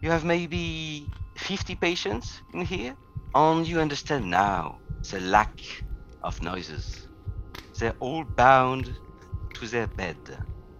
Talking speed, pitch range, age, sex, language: 115 wpm, 95-120 Hz, 50-69, male, English